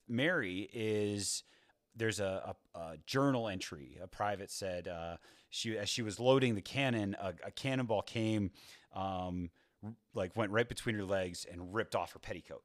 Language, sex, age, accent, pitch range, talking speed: English, male, 30-49, American, 95-125 Hz, 165 wpm